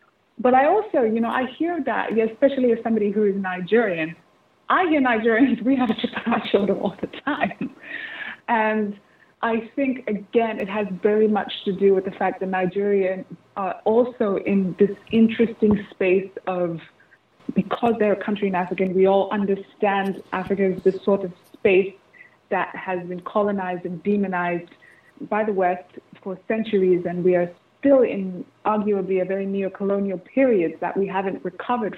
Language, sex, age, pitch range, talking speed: English, female, 20-39, 190-230 Hz, 165 wpm